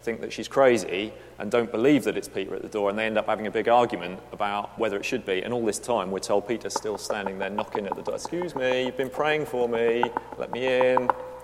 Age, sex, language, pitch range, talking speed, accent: 40-59, male, English, 100-125 Hz, 260 wpm, British